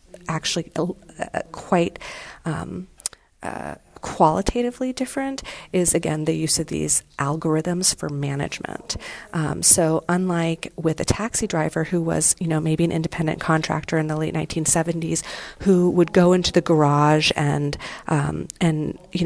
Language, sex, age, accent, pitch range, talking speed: English, female, 40-59, American, 155-175 Hz, 140 wpm